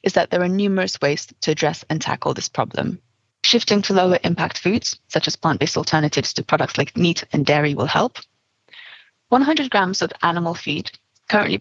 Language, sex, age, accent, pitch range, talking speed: English, female, 30-49, British, 150-200 Hz, 180 wpm